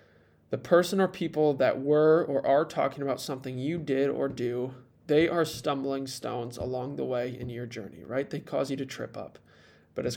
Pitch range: 125-150 Hz